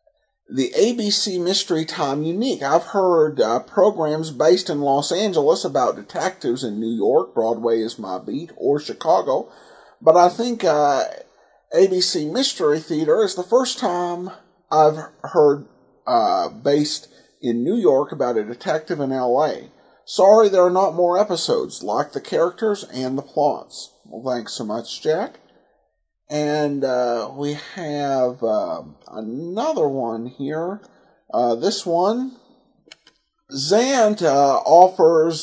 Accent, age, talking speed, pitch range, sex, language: American, 50-69, 130 wpm, 145-210 Hz, male, English